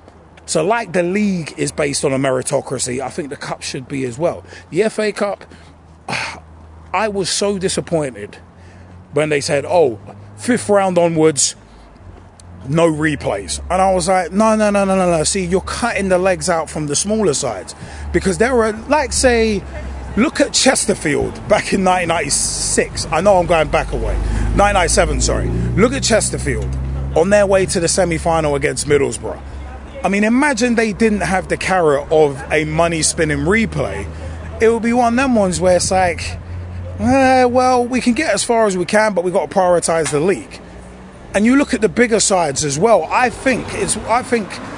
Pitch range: 135-210 Hz